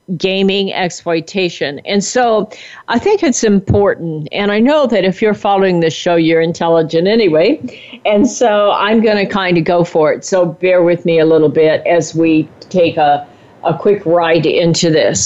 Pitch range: 165-225 Hz